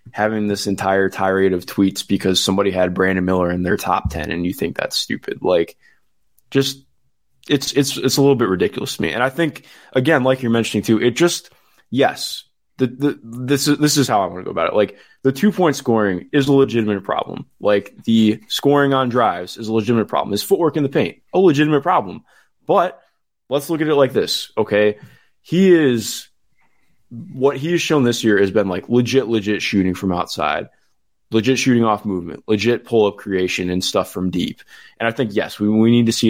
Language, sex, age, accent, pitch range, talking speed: English, male, 20-39, American, 100-135 Hz, 210 wpm